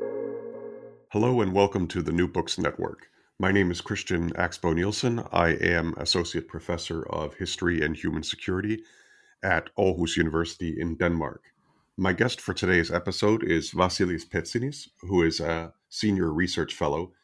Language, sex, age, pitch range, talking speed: English, male, 40-59, 85-100 Hz, 145 wpm